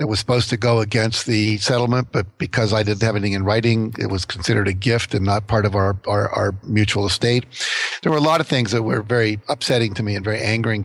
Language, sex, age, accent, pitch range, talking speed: English, male, 50-69, American, 105-125 Hz, 250 wpm